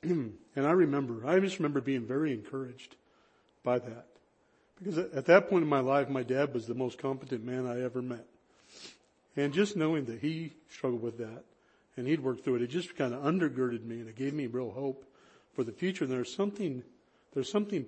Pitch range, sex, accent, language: 120-145 Hz, male, American, English